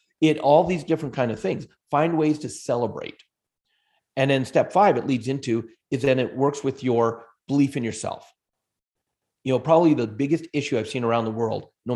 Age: 30-49